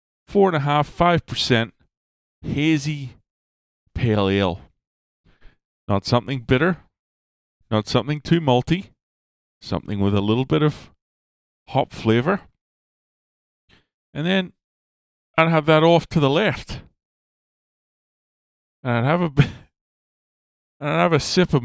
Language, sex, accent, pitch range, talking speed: English, male, American, 90-135 Hz, 110 wpm